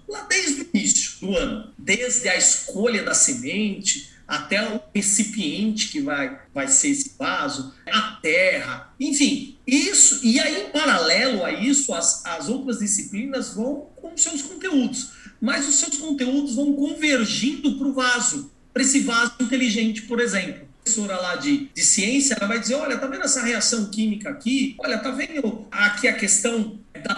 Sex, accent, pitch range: male, Brazilian, 225-280 Hz